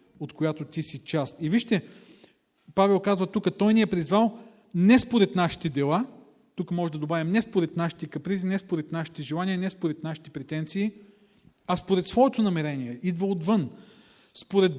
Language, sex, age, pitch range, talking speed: Bulgarian, male, 40-59, 155-200 Hz, 165 wpm